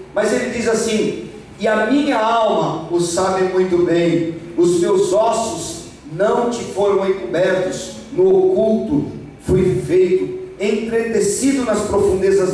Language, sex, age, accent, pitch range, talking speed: Portuguese, male, 50-69, Brazilian, 185-255 Hz, 125 wpm